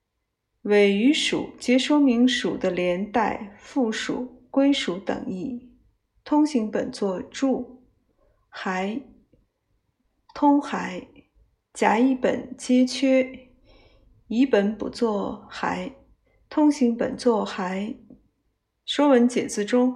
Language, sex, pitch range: Chinese, female, 200-260 Hz